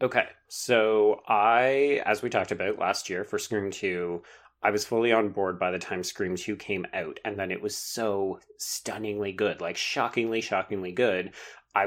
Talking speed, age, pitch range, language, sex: 180 wpm, 30-49, 100-130 Hz, English, male